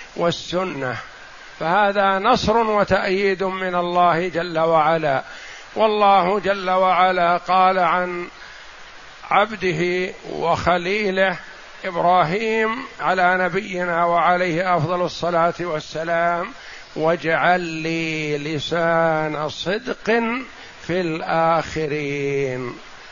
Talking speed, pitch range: 75 wpm, 160-200 Hz